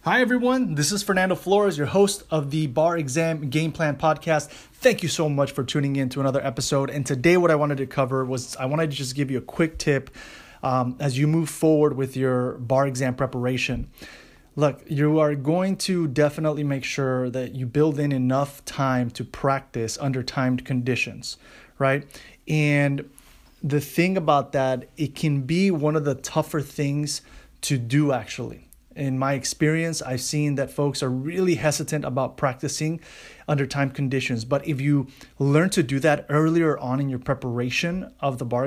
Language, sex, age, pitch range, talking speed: English, male, 30-49, 130-155 Hz, 185 wpm